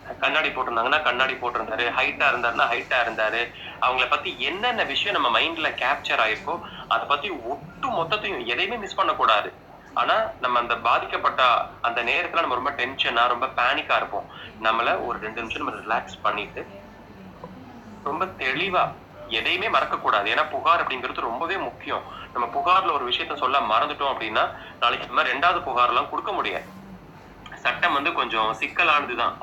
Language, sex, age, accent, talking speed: Tamil, male, 30-49, native, 140 wpm